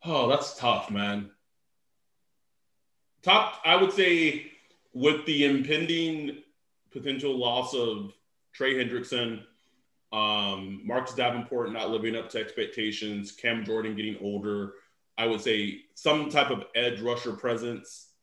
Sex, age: male, 20-39